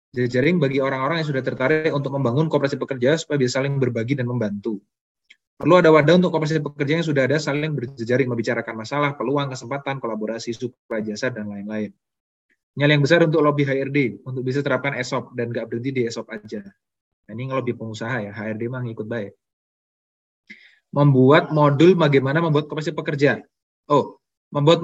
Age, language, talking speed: 20-39, Indonesian, 165 wpm